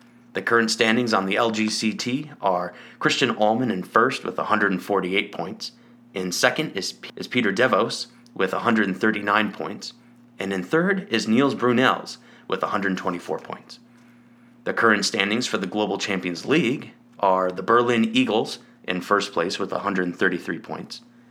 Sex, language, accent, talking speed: male, English, American, 140 wpm